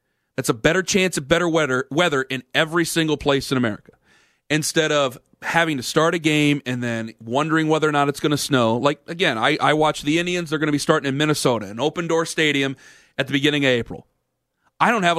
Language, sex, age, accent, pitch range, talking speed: English, male, 40-59, American, 150-195 Hz, 220 wpm